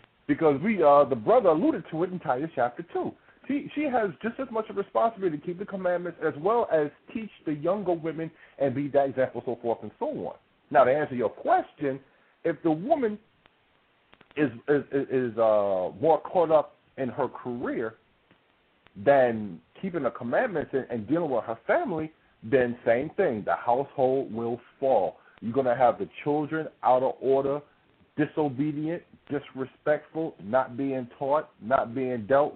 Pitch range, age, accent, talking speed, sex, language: 135-175 Hz, 50-69, American, 170 wpm, male, English